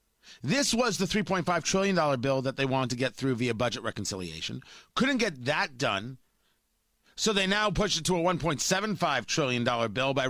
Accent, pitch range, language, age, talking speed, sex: American, 145-205 Hz, English, 40-59, 175 wpm, male